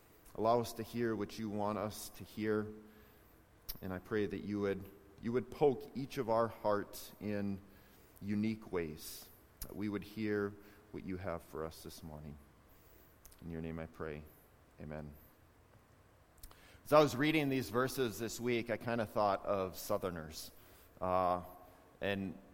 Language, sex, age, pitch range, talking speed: English, male, 30-49, 90-120 Hz, 155 wpm